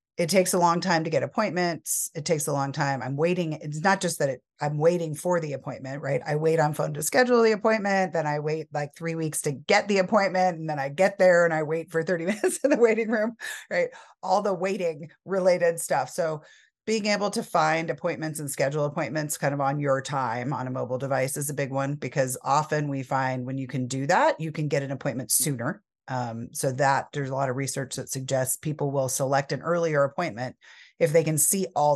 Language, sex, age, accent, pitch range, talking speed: English, female, 30-49, American, 135-170 Hz, 230 wpm